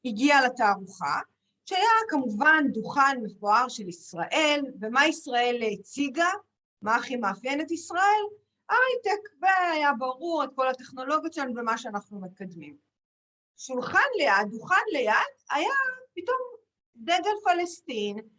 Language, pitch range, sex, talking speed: Hebrew, 220-330 Hz, female, 110 wpm